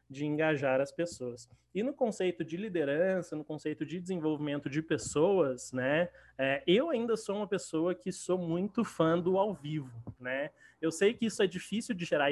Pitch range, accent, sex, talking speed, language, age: 145-185 Hz, Brazilian, male, 185 wpm, Portuguese, 20-39